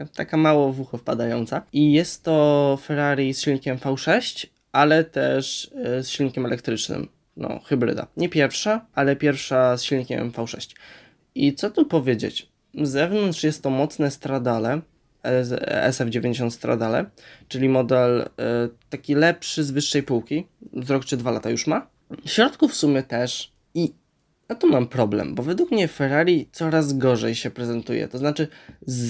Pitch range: 125-155 Hz